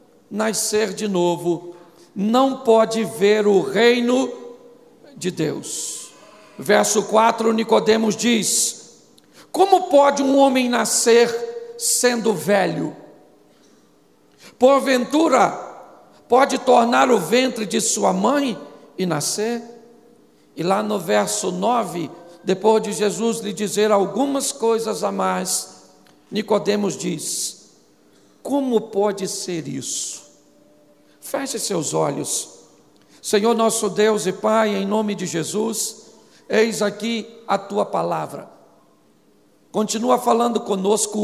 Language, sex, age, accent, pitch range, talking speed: Portuguese, male, 50-69, Brazilian, 200-240 Hz, 105 wpm